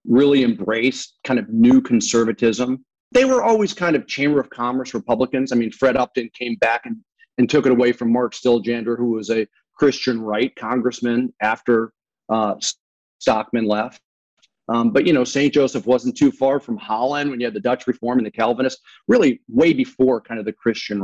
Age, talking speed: 40-59, 190 wpm